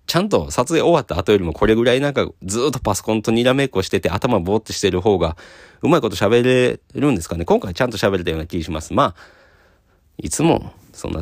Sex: male